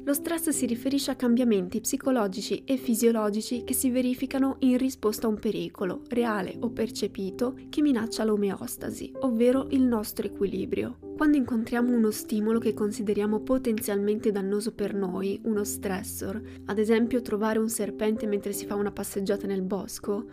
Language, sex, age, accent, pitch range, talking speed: Italian, female, 20-39, native, 205-245 Hz, 150 wpm